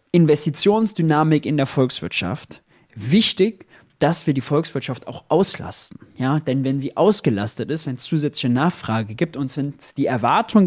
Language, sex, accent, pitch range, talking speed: German, male, German, 125-165 Hz, 150 wpm